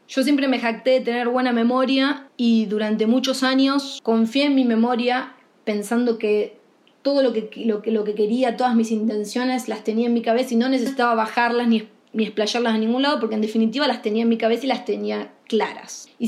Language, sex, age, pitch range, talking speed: Spanish, female, 20-39, 225-270 Hz, 210 wpm